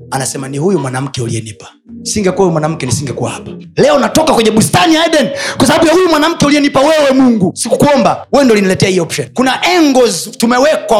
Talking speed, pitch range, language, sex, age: 180 wpm, 175-265 Hz, Swahili, male, 30-49